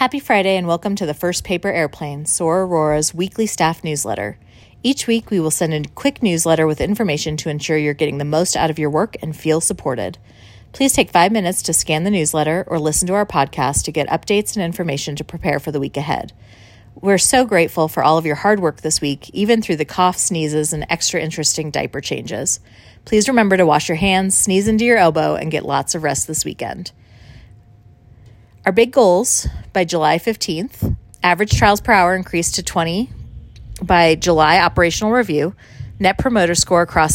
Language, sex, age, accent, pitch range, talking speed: English, female, 30-49, American, 150-190 Hz, 195 wpm